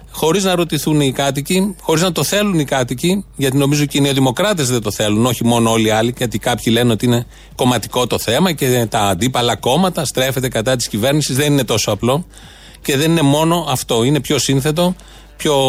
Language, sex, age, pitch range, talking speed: Greek, male, 30-49, 125-165 Hz, 205 wpm